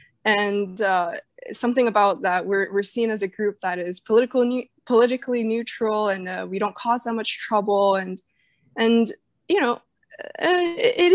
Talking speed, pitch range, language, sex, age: 155 wpm, 185-240 Hz, English, female, 20-39